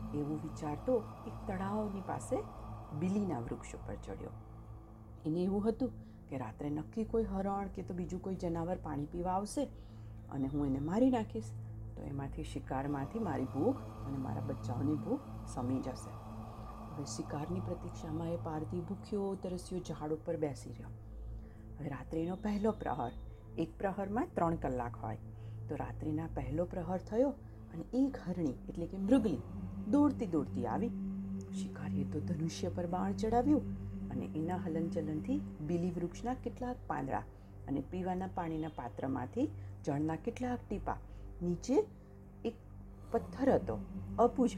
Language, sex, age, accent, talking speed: Gujarati, female, 40-59, native, 135 wpm